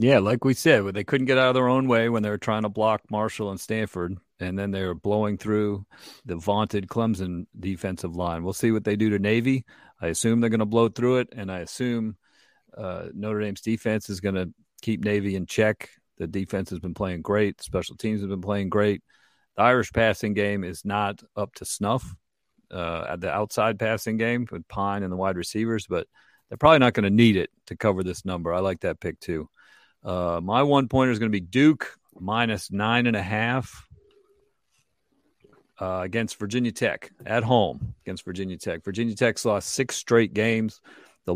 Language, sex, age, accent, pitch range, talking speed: English, male, 40-59, American, 95-115 Hz, 205 wpm